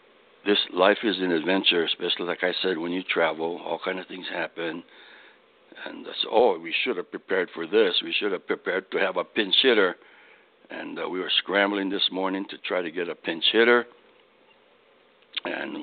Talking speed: 190 wpm